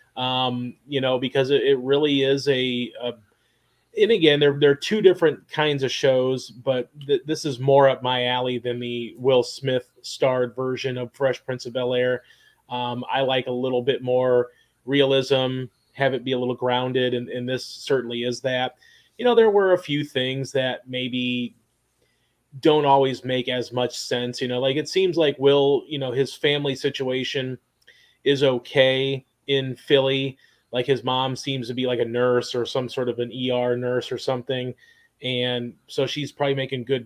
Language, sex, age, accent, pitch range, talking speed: English, male, 30-49, American, 125-140 Hz, 180 wpm